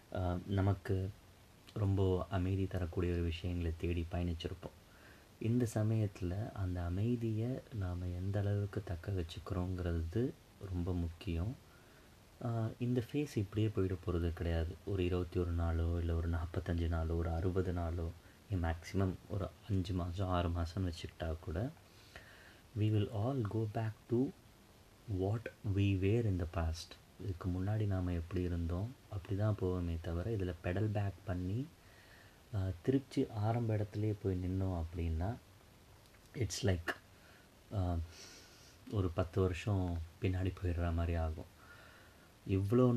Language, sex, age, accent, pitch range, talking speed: Tamil, male, 30-49, native, 90-105 Hz, 120 wpm